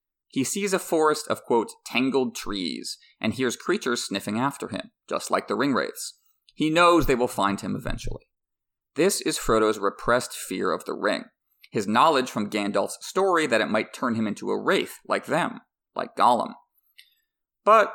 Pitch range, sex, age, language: 110-180 Hz, male, 30-49, English